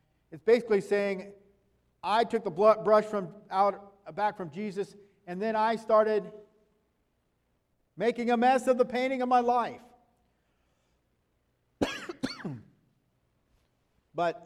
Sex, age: male, 50-69